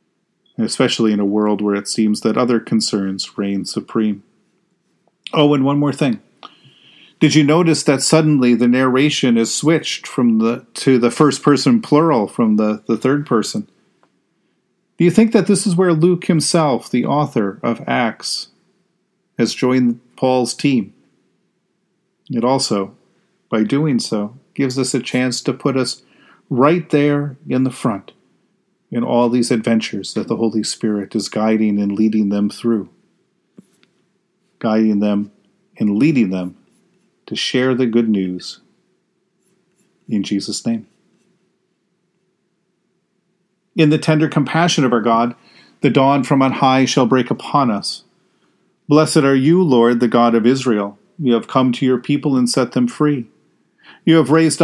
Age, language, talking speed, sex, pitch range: 40-59, English, 150 wpm, male, 115-180 Hz